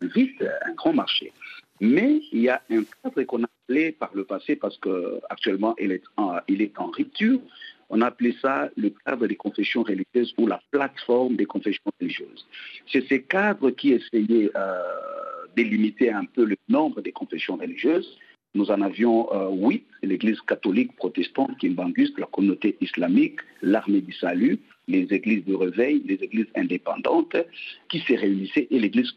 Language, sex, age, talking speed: French, male, 50-69, 165 wpm